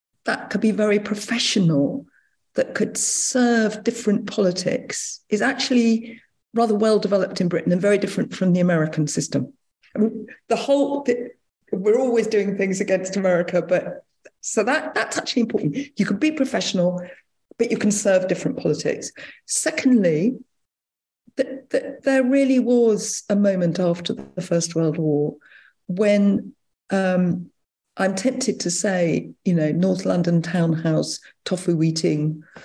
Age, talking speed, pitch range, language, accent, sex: 50-69, 140 wpm, 175-230 Hz, English, British, female